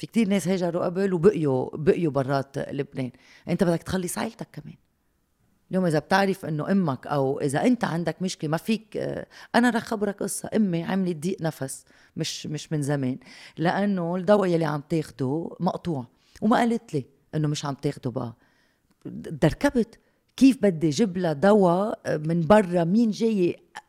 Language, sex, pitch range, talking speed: Arabic, female, 160-215 Hz, 155 wpm